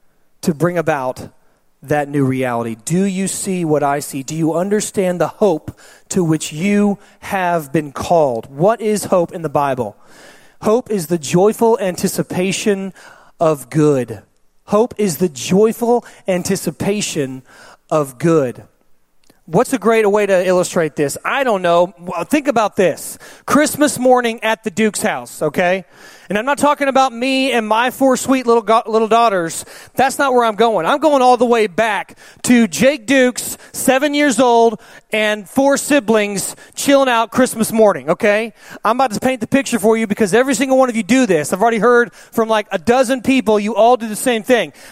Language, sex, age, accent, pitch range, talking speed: English, male, 30-49, American, 185-275 Hz, 175 wpm